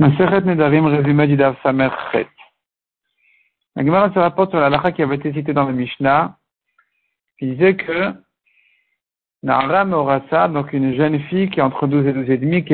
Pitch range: 135-170 Hz